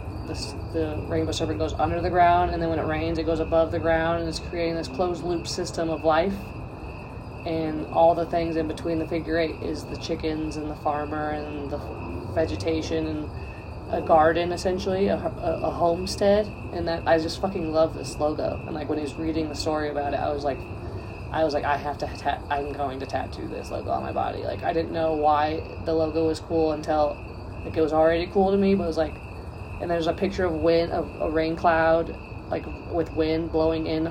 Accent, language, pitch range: American, English, 135-175 Hz